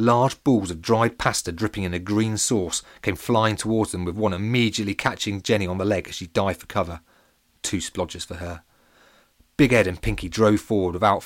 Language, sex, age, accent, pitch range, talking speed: English, male, 30-49, British, 90-110 Hz, 205 wpm